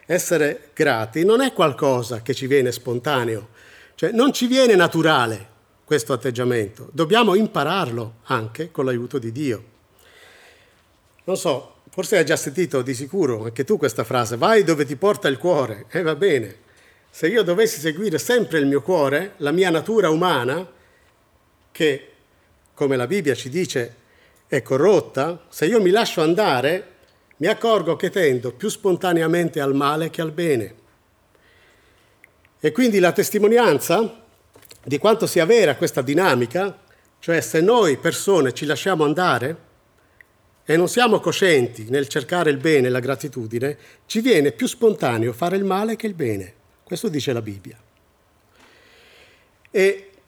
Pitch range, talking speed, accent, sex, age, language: 130-195 Hz, 145 wpm, native, male, 50-69, Italian